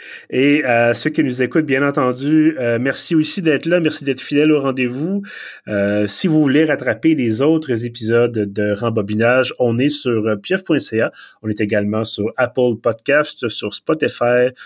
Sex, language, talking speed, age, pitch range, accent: male, French, 165 wpm, 30-49, 110-145 Hz, Canadian